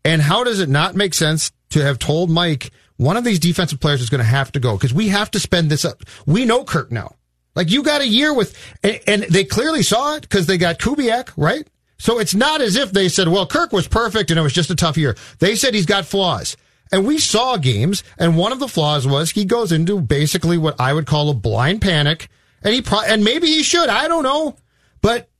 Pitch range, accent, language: 150-220 Hz, American, English